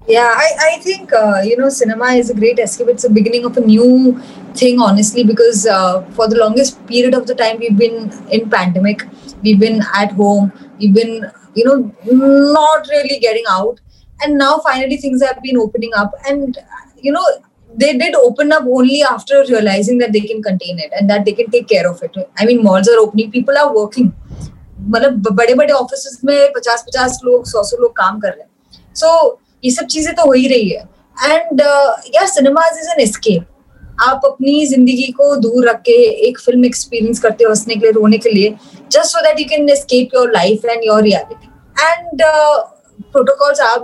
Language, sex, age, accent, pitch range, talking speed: English, female, 20-39, Indian, 220-280 Hz, 155 wpm